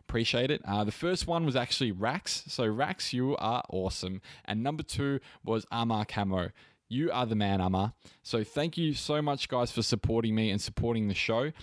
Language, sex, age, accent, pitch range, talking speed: English, male, 20-39, Australian, 100-125 Hz, 195 wpm